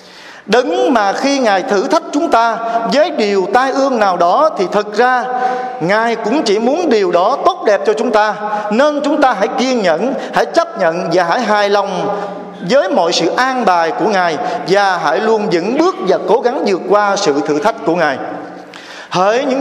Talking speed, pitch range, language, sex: 200 wpm, 200-250 Hz, Vietnamese, male